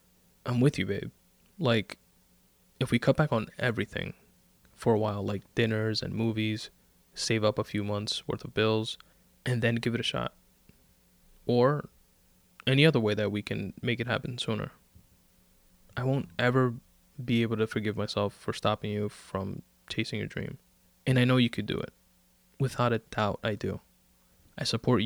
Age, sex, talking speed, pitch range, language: 20-39, male, 170 wpm, 90-125 Hz, English